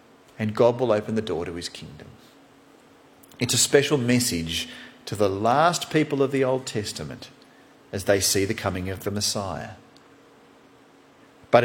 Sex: male